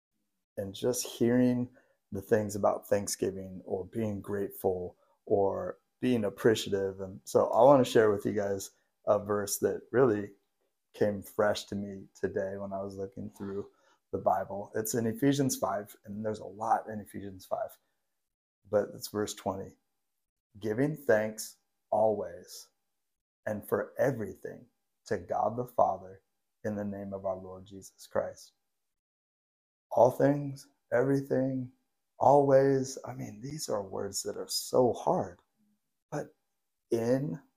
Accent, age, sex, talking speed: American, 30-49, male, 135 wpm